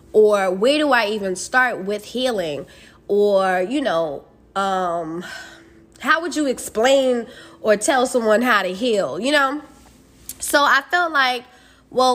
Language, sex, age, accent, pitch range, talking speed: English, female, 10-29, American, 195-245 Hz, 145 wpm